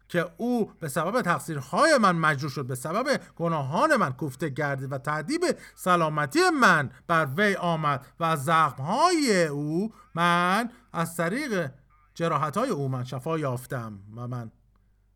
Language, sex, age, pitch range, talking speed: Persian, male, 50-69, 110-175 Hz, 135 wpm